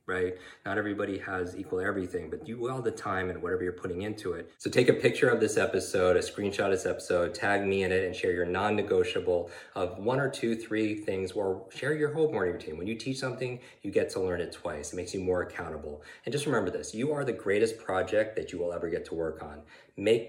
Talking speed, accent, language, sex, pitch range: 245 wpm, American, English, male, 90-115 Hz